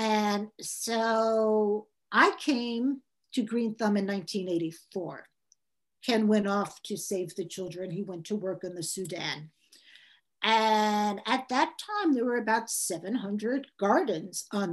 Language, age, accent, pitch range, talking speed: English, 50-69, American, 200-245 Hz, 135 wpm